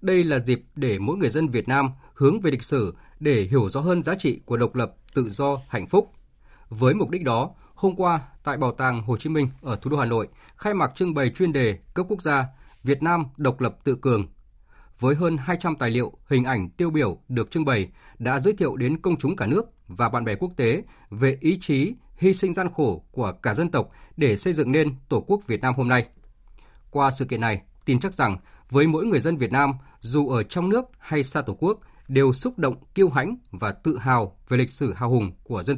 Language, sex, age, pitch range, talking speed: Vietnamese, male, 20-39, 125-165 Hz, 235 wpm